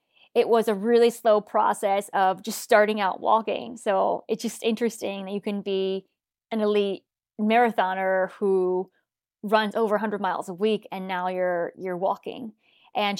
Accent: American